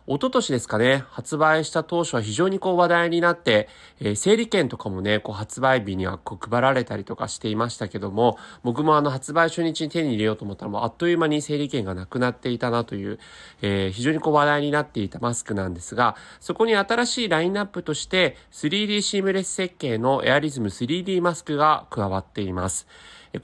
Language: Japanese